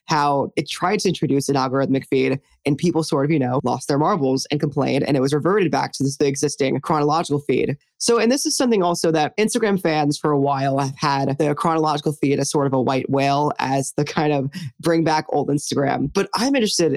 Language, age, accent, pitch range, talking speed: English, 20-39, American, 140-165 Hz, 225 wpm